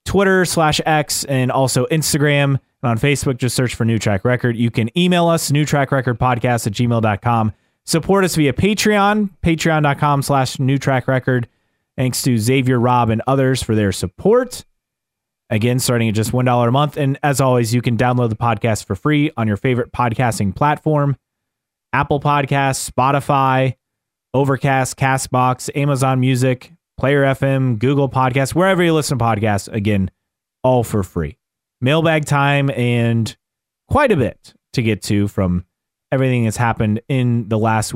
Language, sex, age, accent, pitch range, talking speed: English, male, 30-49, American, 115-140 Hz, 160 wpm